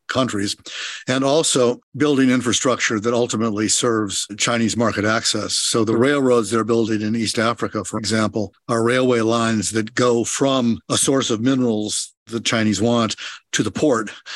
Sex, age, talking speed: male, 50-69, 155 wpm